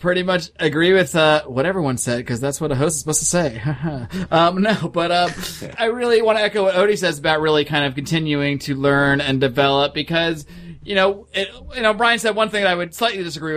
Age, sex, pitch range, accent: 30-49, male, 145-180 Hz, American